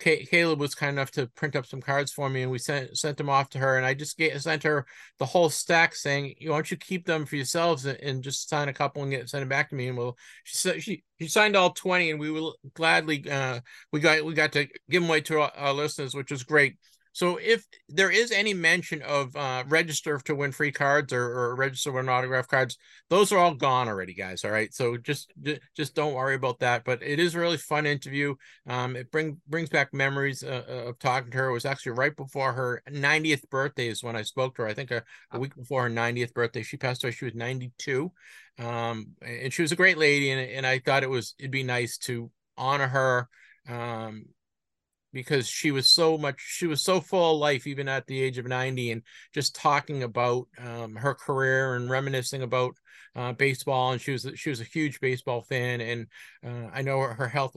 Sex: male